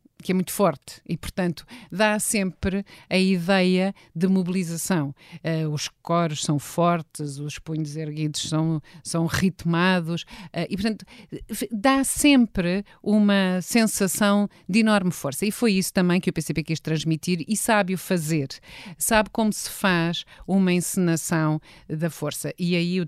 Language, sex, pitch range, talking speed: Portuguese, female, 155-190 Hz, 150 wpm